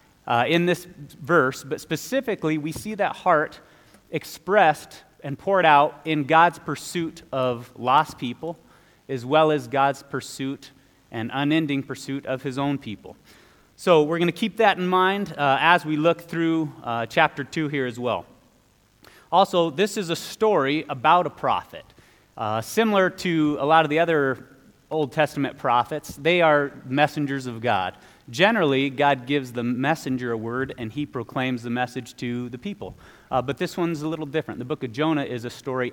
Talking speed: 175 wpm